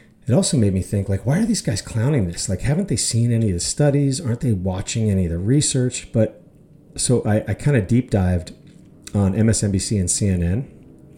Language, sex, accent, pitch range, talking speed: English, male, American, 95-115 Hz, 205 wpm